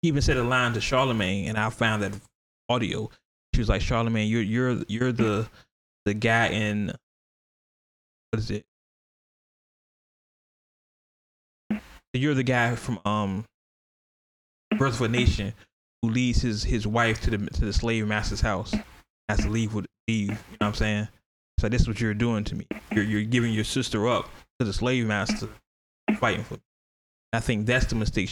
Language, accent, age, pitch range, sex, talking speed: English, American, 20-39, 105-120 Hz, male, 175 wpm